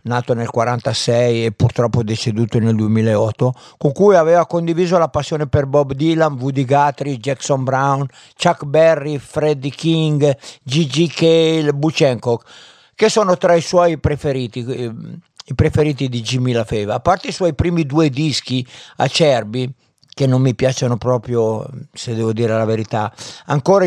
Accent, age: native, 50-69